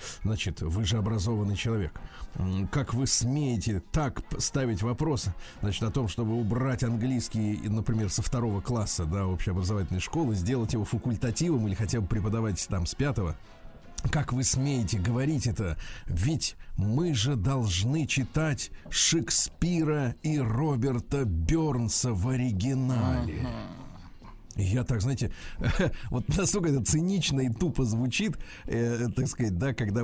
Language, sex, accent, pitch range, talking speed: Russian, male, native, 100-130 Hz, 130 wpm